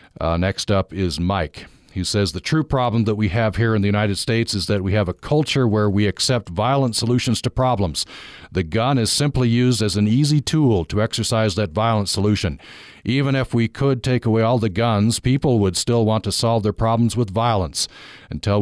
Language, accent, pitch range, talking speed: English, American, 100-125 Hz, 210 wpm